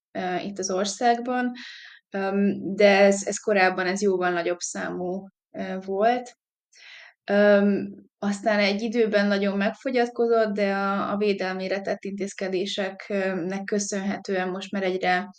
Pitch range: 190-210 Hz